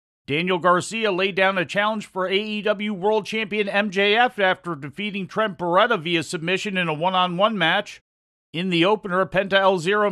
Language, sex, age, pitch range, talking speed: English, male, 40-59, 170-205 Hz, 160 wpm